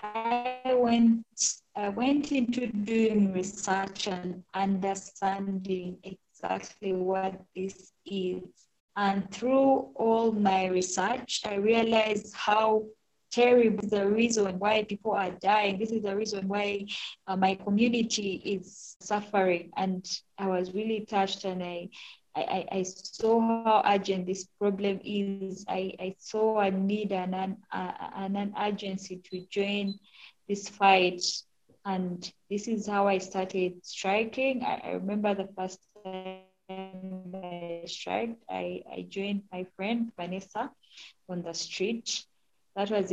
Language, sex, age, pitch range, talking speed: English, female, 20-39, 185-210 Hz, 130 wpm